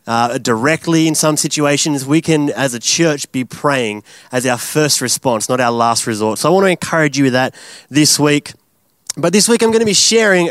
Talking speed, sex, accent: 215 wpm, male, Australian